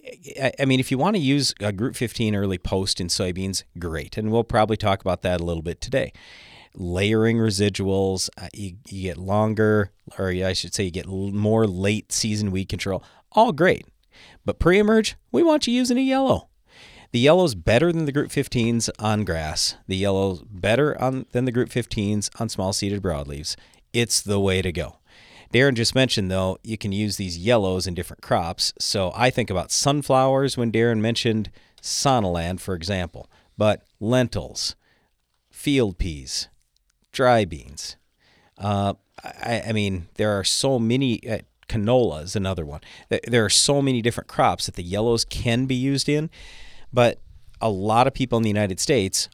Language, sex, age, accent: English, male, 40-59, American